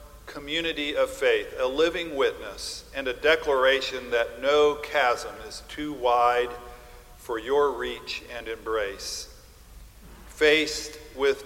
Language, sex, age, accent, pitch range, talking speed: English, male, 50-69, American, 120-165 Hz, 115 wpm